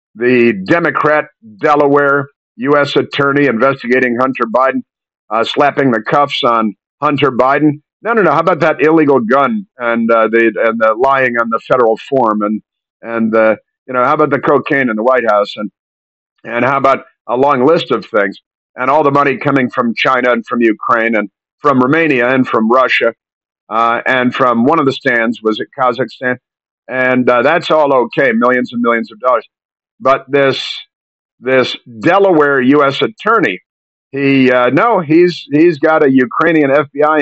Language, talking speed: English, 170 wpm